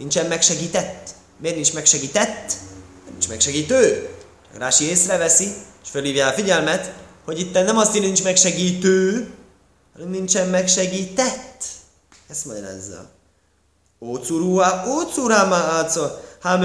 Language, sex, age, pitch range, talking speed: Hungarian, male, 30-49, 130-200 Hz, 110 wpm